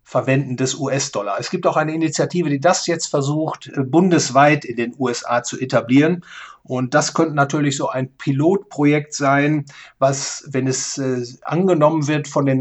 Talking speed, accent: 160 wpm, German